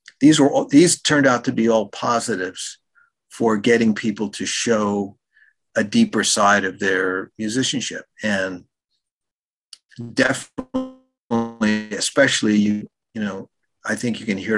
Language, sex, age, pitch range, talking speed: English, male, 50-69, 100-135 Hz, 130 wpm